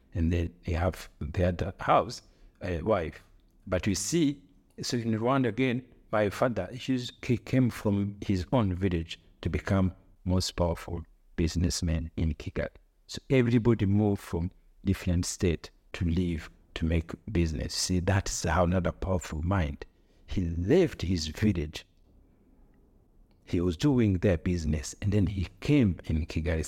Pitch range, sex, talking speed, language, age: 85-105 Hz, male, 140 wpm, English, 60-79